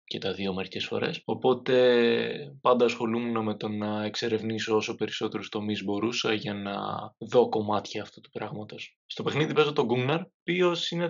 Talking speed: 170 wpm